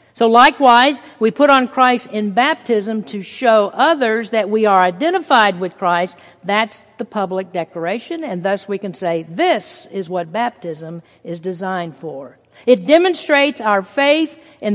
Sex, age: female, 50-69